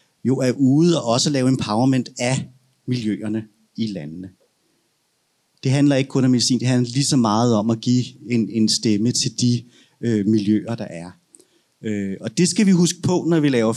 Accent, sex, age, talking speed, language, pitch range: native, male, 30-49, 190 wpm, Danish, 110-140 Hz